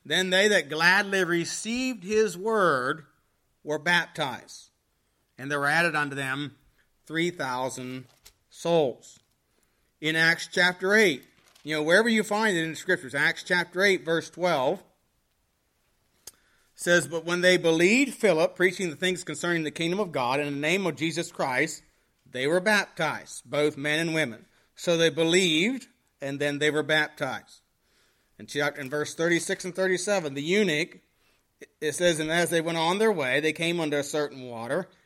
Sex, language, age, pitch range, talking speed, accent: male, English, 40-59, 145-180 Hz, 160 wpm, American